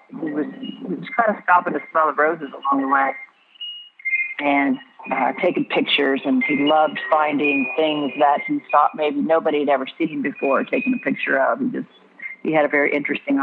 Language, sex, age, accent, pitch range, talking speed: English, female, 50-69, American, 155-210 Hz, 190 wpm